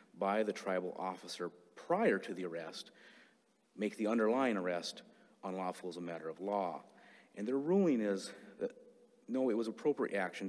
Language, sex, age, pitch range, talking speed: English, male, 40-59, 95-115 Hz, 160 wpm